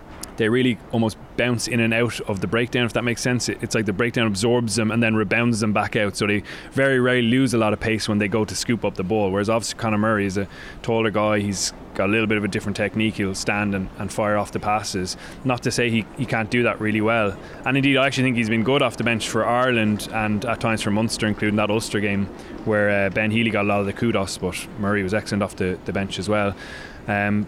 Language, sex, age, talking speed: English, male, 20-39, 265 wpm